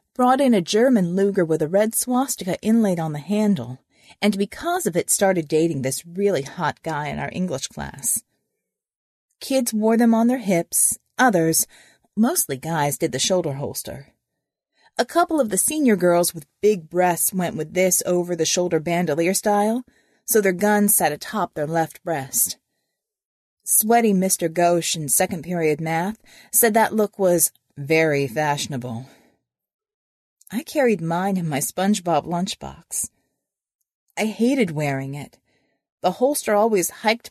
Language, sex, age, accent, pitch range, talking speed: English, female, 30-49, American, 160-220 Hz, 145 wpm